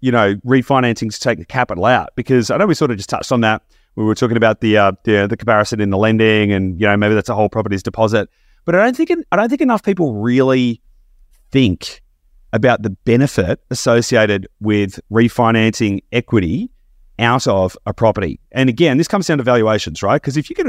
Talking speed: 215 wpm